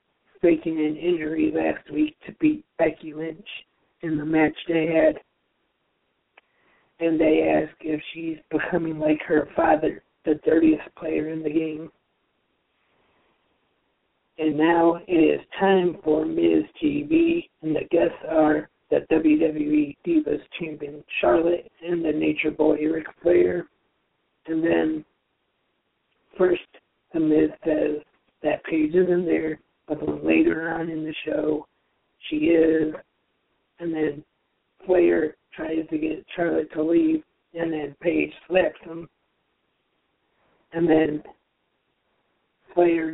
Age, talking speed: 60-79, 120 wpm